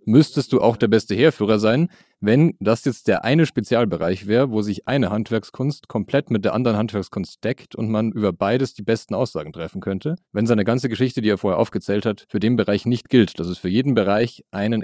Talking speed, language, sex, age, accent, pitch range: 215 wpm, German, male, 30-49, German, 105-130 Hz